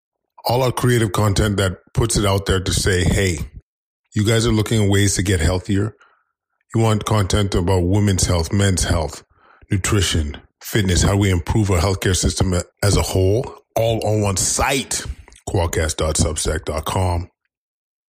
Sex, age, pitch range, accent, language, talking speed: male, 20-39, 85-105 Hz, American, English, 150 wpm